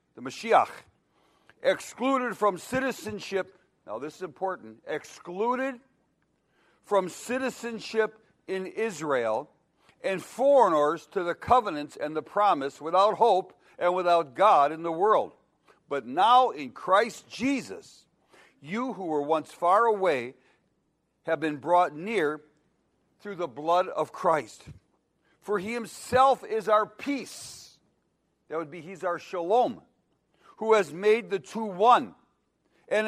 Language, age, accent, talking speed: English, 60-79, American, 125 wpm